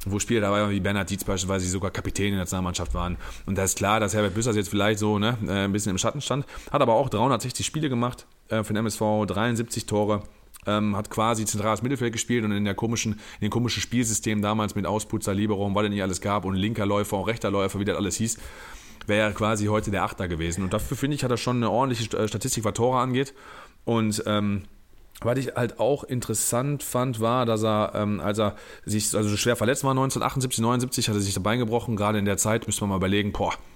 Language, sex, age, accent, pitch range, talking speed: German, male, 30-49, German, 105-120 Hz, 230 wpm